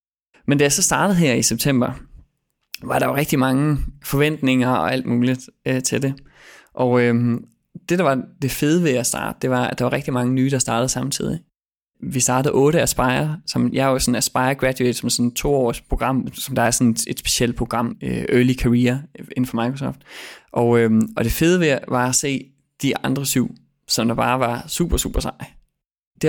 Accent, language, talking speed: native, Danish, 210 wpm